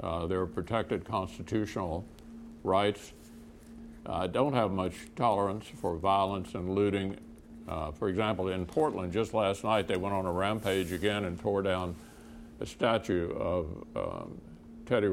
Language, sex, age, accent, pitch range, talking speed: English, male, 60-79, American, 85-115 Hz, 145 wpm